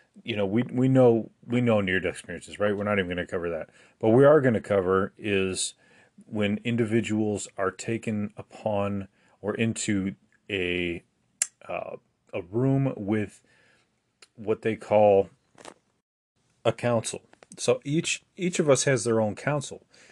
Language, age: English, 30-49